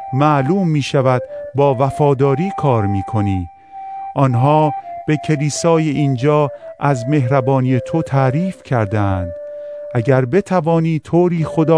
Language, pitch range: Persian, 130-170 Hz